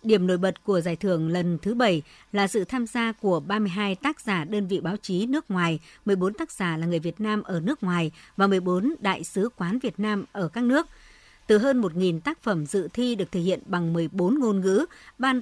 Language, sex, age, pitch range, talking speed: Vietnamese, male, 60-79, 180-235 Hz, 225 wpm